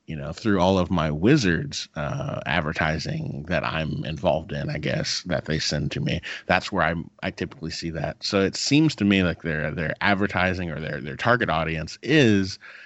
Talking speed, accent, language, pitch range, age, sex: 195 wpm, American, English, 85-100 Hz, 30-49, male